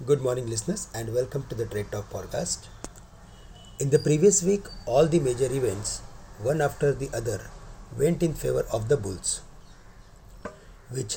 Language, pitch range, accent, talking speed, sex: English, 100-140 Hz, Indian, 155 wpm, male